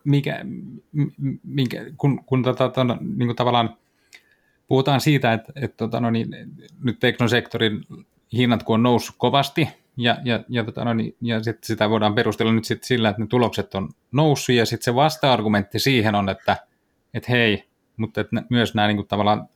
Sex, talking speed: male, 170 wpm